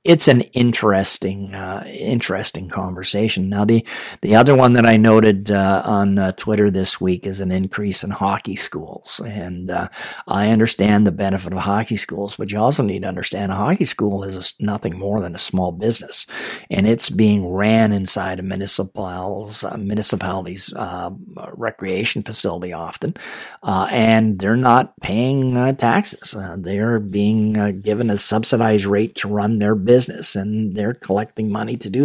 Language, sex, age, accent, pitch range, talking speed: English, male, 50-69, American, 95-115 Hz, 170 wpm